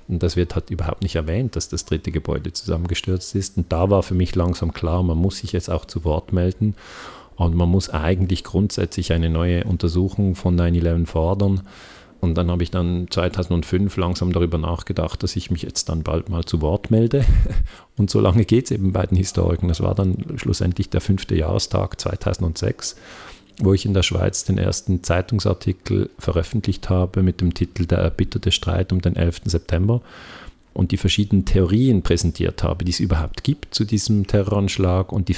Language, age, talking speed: German, 40-59, 185 wpm